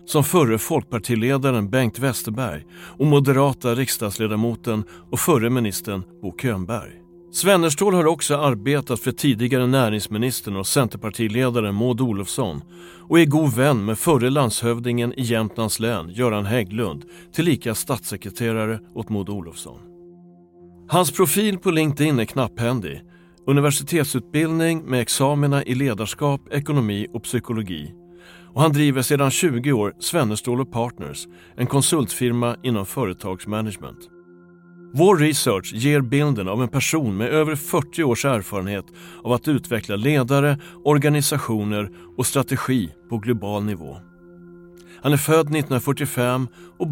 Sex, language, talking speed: male, Swedish, 120 wpm